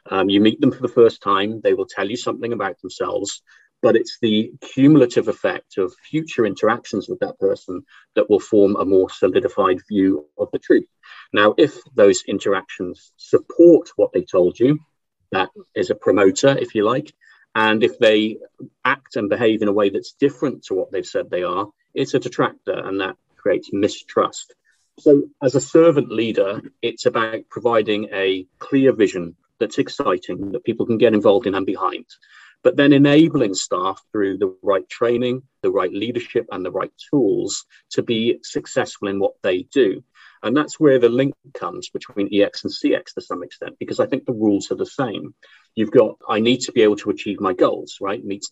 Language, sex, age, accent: English, male, 40-59, British